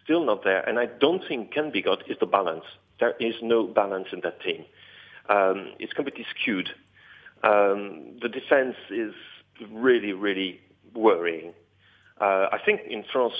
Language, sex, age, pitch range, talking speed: English, male, 50-69, 100-125 Hz, 155 wpm